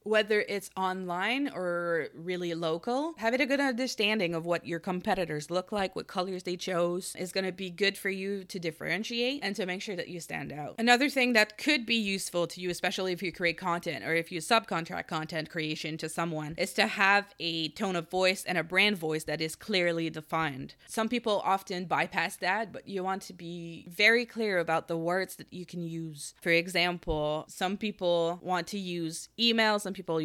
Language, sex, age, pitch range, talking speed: English, female, 20-39, 165-195 Hz, 200 wpm